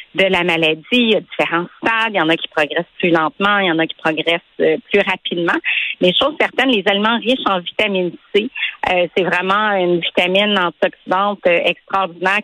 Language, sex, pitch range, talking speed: French, female, 180-225 Hz, 190 wpm